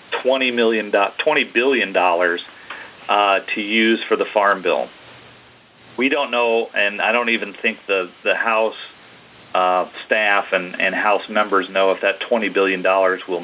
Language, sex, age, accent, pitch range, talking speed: English, male, 40-59, American, 90-110 Hz, 150 wpm